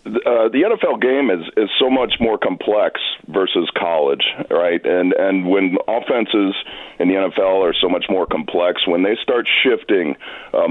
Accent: American